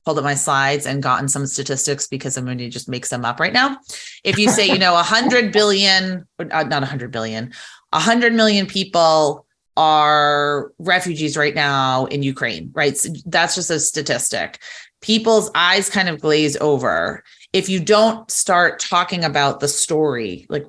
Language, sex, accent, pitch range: English, female, American, 140-180 Hz